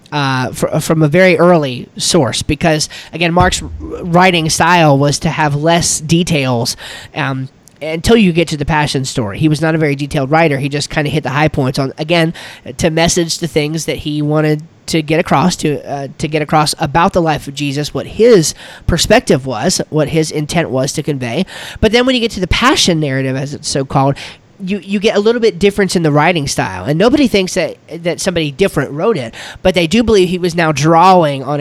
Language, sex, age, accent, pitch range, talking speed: English, male, 30-49, American, 145-175 Hz, 210 wpm